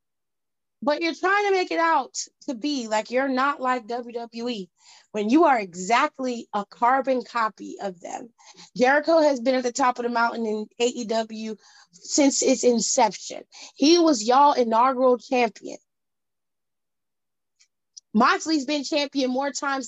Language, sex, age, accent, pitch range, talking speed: English, female, 30-49, American, 240-330 Hz, 140 wpm